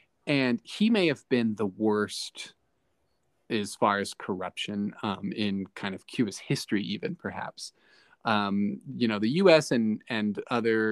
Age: 30-49